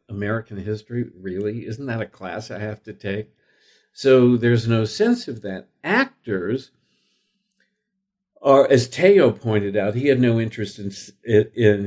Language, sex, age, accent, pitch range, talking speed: English, male, 60-79, American, 110-160 Hz, 145 wpm